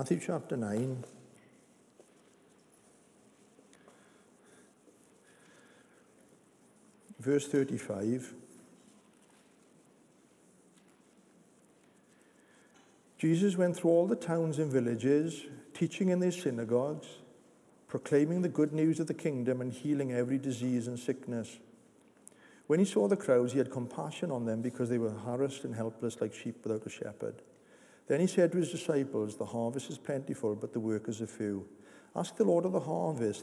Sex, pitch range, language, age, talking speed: male, 115-150 Hz, English, 60-79, 130 wpm